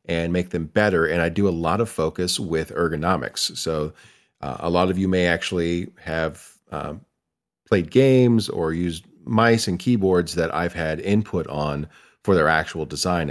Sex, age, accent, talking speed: male, 40-59, American, 175 wpm